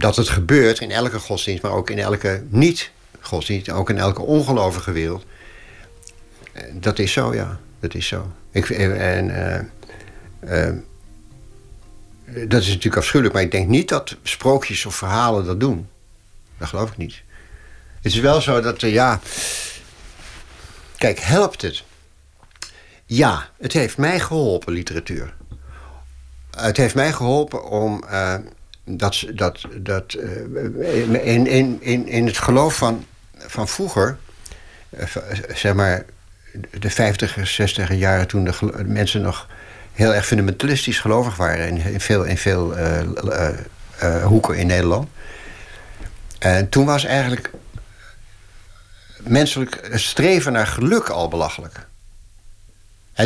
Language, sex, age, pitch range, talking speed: Dutch, male, 60-79, 95-115 Hz, 135 wpm